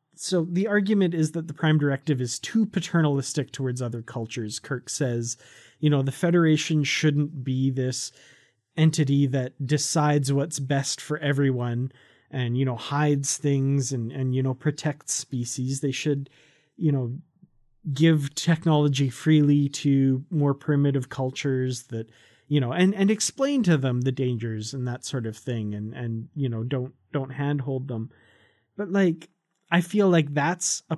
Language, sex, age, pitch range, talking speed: English, male, 30-49, 130-160 Hz, 160 wpm